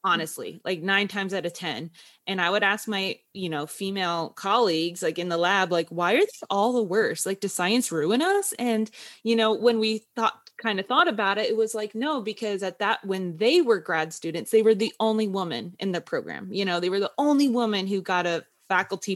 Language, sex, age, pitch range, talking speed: English, female, 20-39, 175-225 Hz, 230 wpm